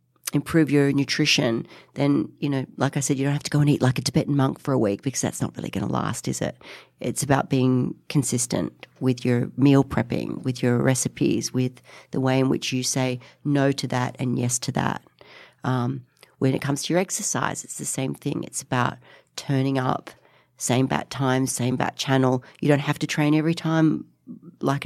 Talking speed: 210 wpm